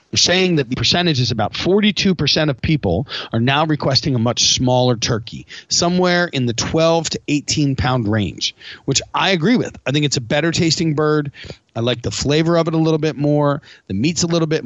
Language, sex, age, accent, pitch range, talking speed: English, male, 30-49, American, 120-155 Hz, 195 wpm